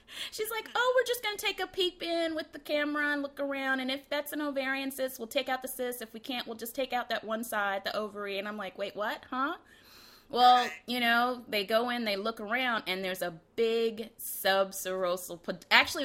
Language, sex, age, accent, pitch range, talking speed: English, female, 20-39, American, 165-245 Hz, 225 wpm